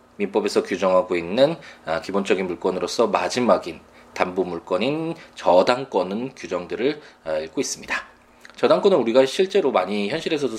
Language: Korean